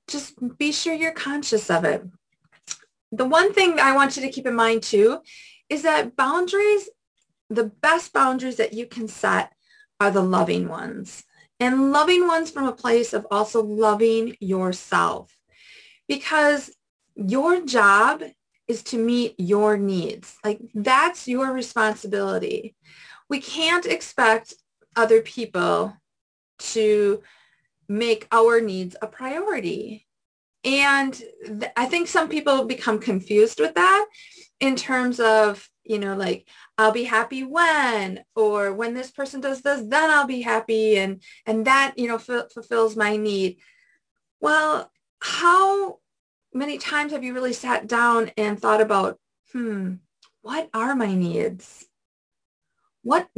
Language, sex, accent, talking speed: English, female, American, 135 wpm